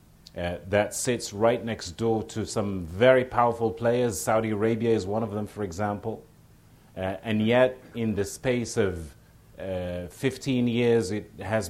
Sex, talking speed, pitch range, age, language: male, 160 wpm, 95-115 Hz, 40-59, English